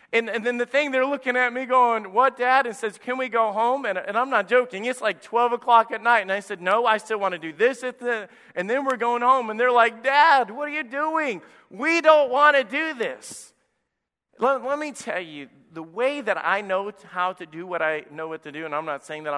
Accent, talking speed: American, 255 wpm